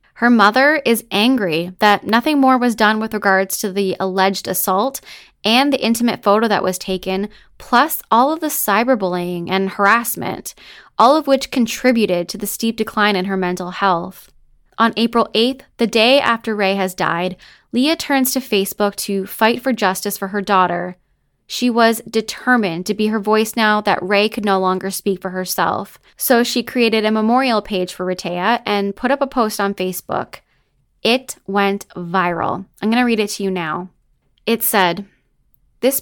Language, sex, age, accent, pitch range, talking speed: English, female, 10-29, American, 190-235 Hz, 175 wpm